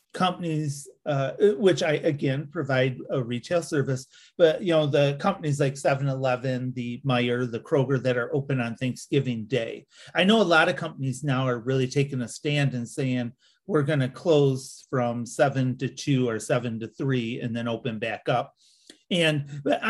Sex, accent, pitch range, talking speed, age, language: male, American, 130-160 Hz, 180 wpm, 40-59, English